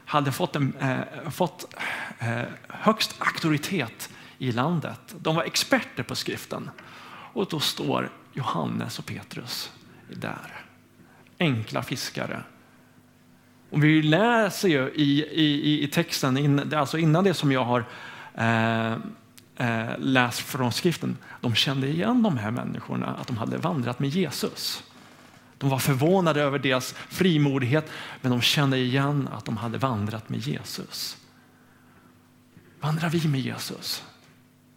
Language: Swedish